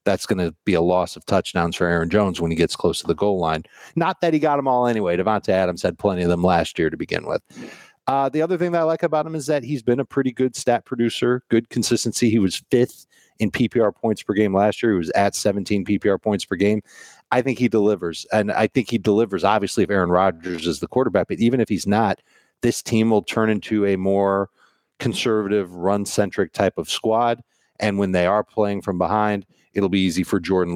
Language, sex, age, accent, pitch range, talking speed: English, male, 40-59, American, 95-120 Hz, 235 wpm